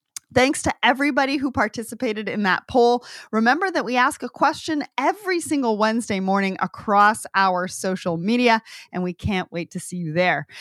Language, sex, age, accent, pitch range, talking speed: English, female, 30-49, American, 195-280 Hz, 170 wpm